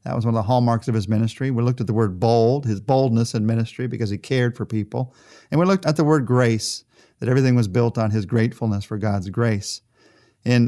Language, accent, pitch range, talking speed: English, American, 110-140 Hz, 235 wpm